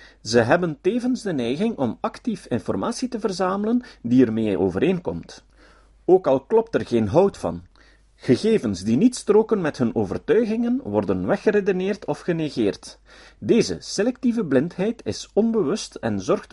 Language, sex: Dutch, male